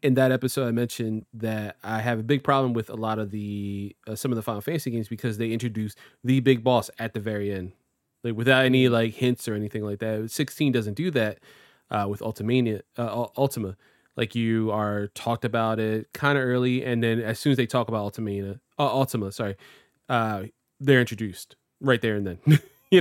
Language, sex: English, male